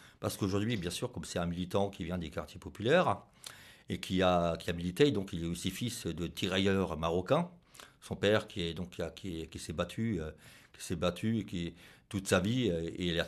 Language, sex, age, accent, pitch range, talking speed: French, male, 50-69, French, 90-110 Hz, 215 wpm